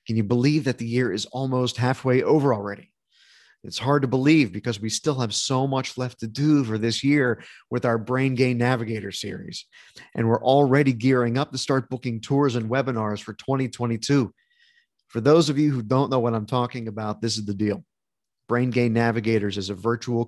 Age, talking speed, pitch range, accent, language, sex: 30-49, 200 wpm, 115-135 Hz, American, English, male